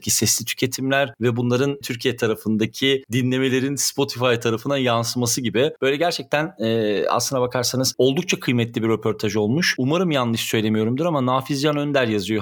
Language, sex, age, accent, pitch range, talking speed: Turkish, male, 40-59, native, 115-135 Hz, 135 wpm